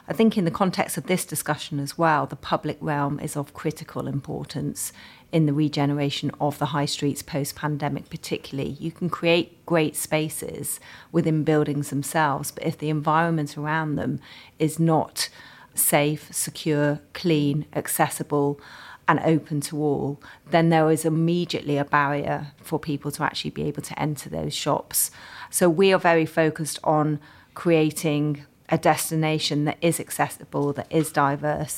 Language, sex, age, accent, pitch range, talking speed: English, female, 40-59, British, 145-160 Hz, 155 wpm